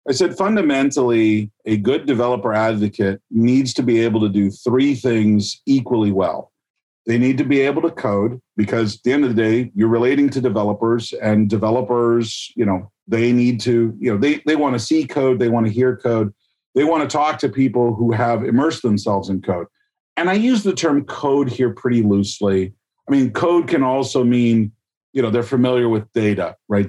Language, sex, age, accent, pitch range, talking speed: English, male, 40-59, American, 105-130 Hz, 195 wpm